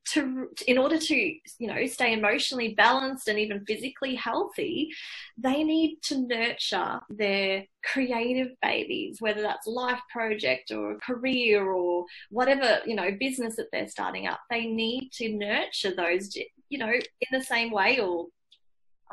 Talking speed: 155 wpm